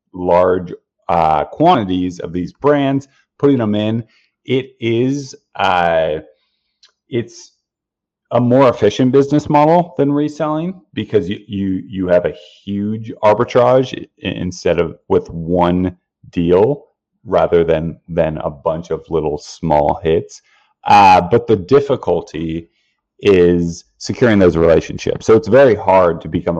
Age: 30-49